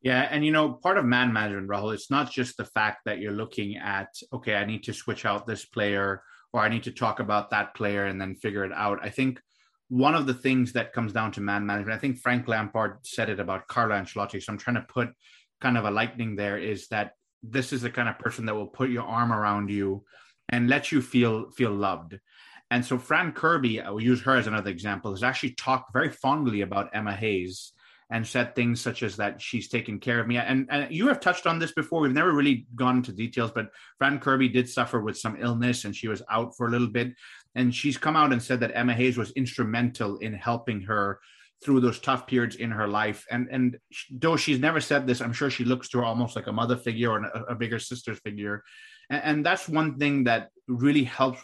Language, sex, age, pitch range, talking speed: English, male, 30-49, 105-125 Hz, 240 wpm